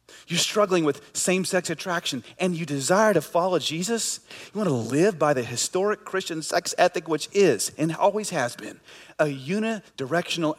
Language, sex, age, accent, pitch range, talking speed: English, male, 30-49, American, 140-200 Hz, 165 wpm